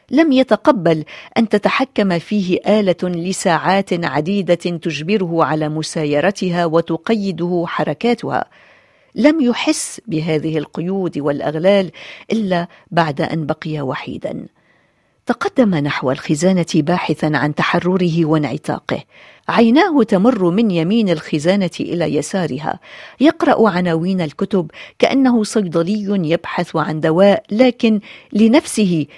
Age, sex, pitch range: 40-59, female, 160-210 Hz